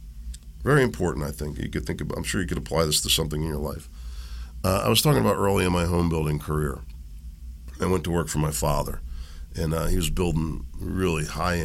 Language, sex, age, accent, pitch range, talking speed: English, male, 50-69, American, 75-90 Hz, 225 wpm